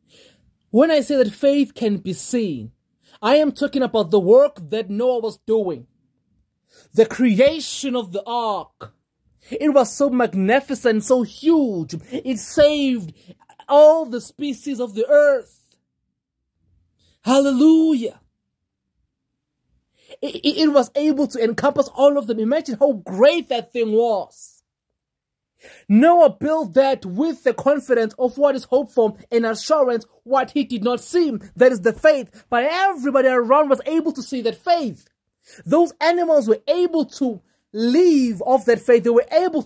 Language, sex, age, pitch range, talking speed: English, male, 30-49, 225-295 Hz, 145 wpm